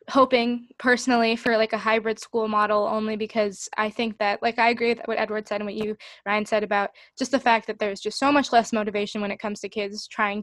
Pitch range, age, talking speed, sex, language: 220-260 Hz, 10-29, 240 wpm, female, English